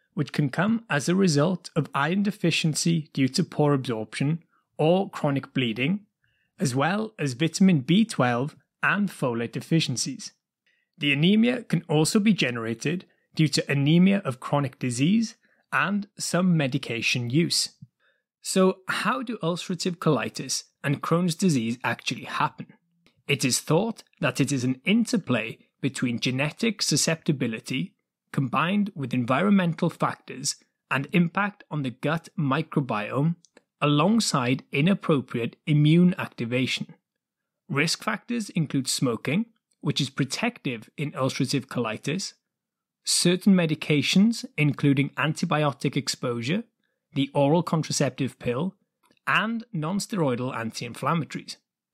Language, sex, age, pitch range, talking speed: English, male, 30-49, 140-190 Hz, 110 wpm